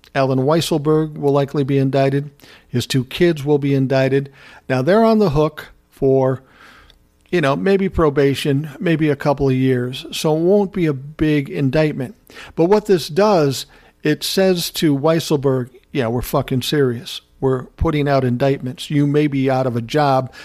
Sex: male